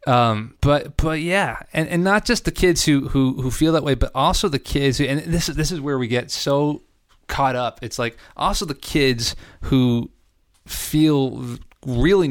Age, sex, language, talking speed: 30-49, male, English, 195 wpm